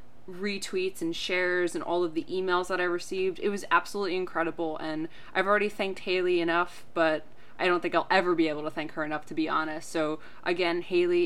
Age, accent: 20-39, American